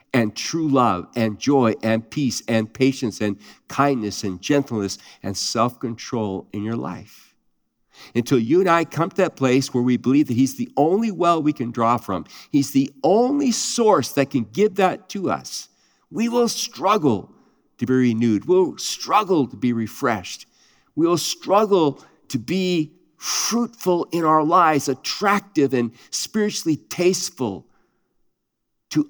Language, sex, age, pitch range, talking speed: English, male, 50-69, 110-155 Hz, 150 wpm